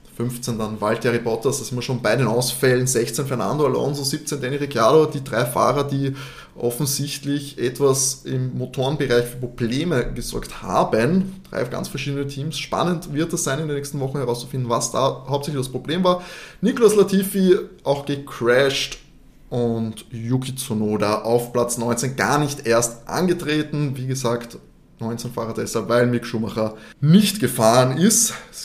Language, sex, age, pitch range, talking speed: German, male, 20-39, 115-140 Hz, 155 wpm